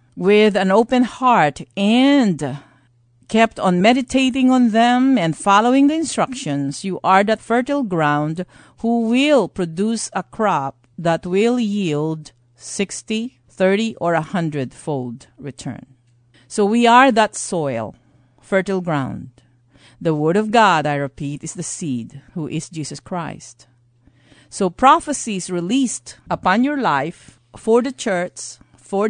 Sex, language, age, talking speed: female, English, 50-69, 130 wpm